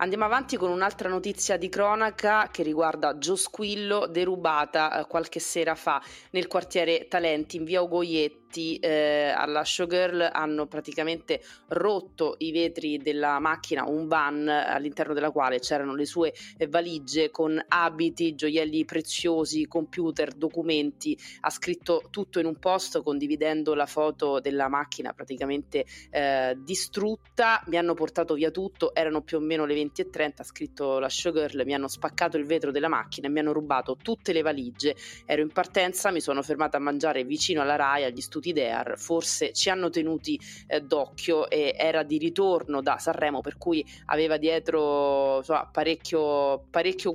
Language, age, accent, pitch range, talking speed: Italian, 20-39, native, 150-175 Hz, 155 wpm